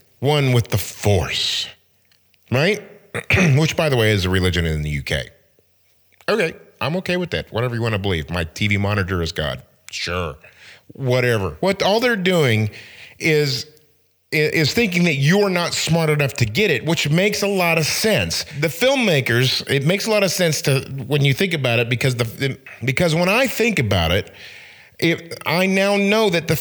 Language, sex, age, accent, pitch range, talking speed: English, male, 40-59, American, 115-175 Hz, 185 wpm